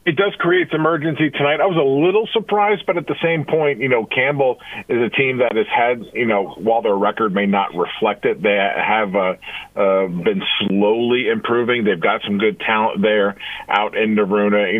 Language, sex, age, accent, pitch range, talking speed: English, male, 40-59, American, 100-145 Hz, 205 wpm